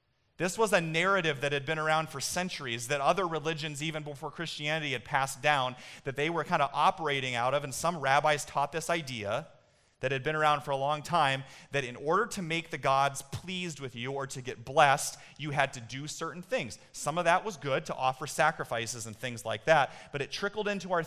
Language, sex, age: English, male, 30-49